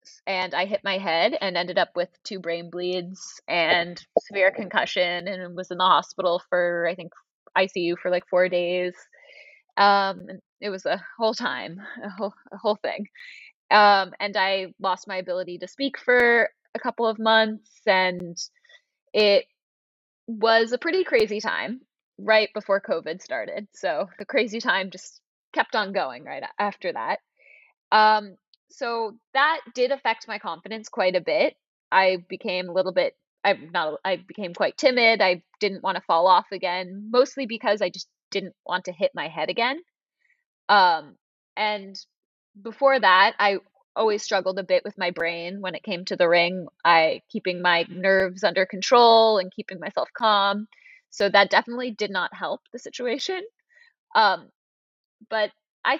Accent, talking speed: American, 165 wpm